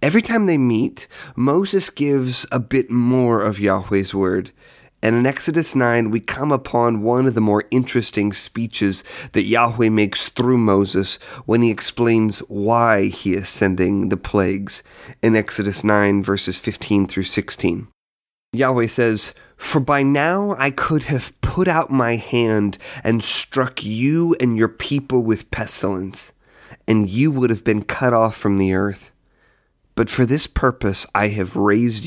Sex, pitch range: male, 100-130 Hz